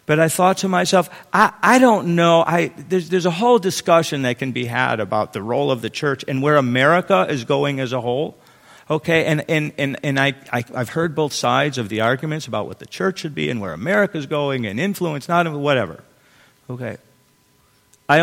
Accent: American